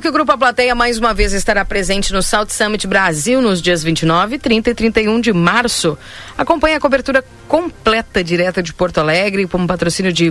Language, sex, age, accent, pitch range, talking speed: Portuguese, female, 40-59, Brazilian, 175-240 Hz, 190 wpm